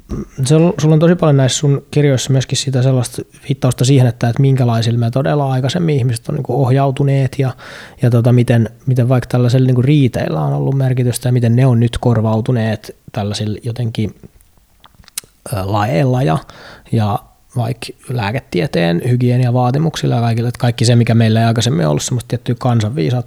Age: 20-39